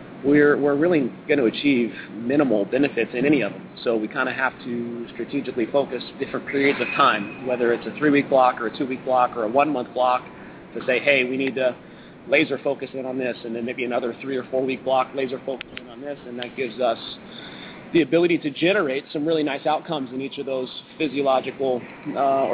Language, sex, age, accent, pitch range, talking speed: English, male, 30-49, American, 120-145 Hz, 210 wpm